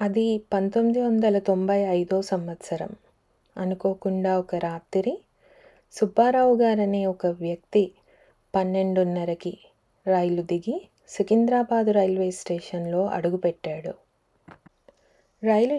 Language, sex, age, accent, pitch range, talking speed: Telugu, female, 30-49, native, 180-210 Hz, 80 wpm